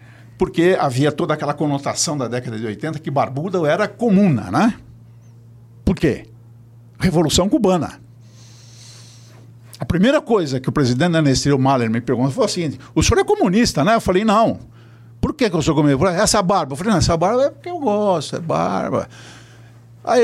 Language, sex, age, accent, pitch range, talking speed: Portuguese, male, 60-79, Brazilian, 120-185 Hz, 170 wpm